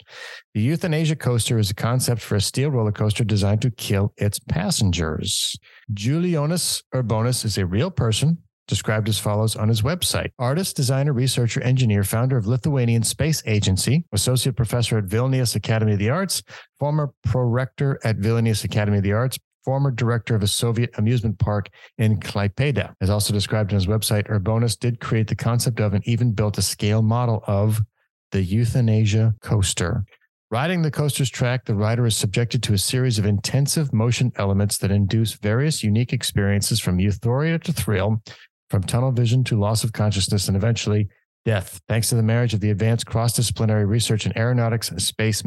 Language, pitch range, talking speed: English, 105-125 Hz, 175 wpm